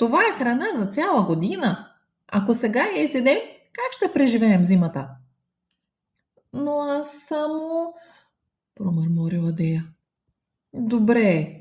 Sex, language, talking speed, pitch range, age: female, English, 105 wpm, 170-230 Hz, 30-49